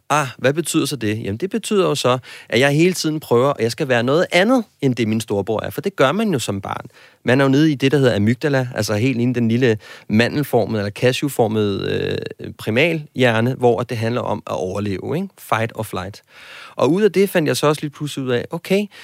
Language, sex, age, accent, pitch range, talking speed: Danish, male, 30-49, native, 120-170 Hz, 240 wpm